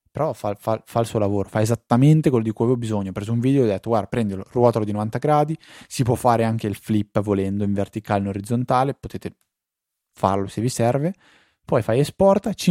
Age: 20-39